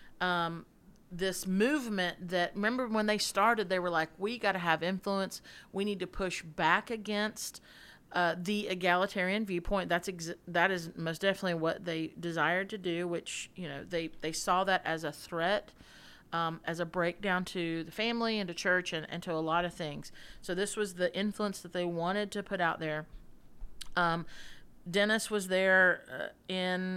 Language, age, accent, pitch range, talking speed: English, 40-59, American, 170-195 Hz, 180 wpm